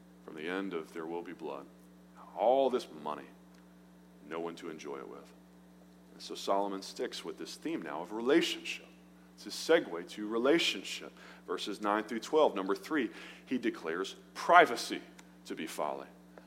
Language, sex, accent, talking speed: English, male, American, 160 wpm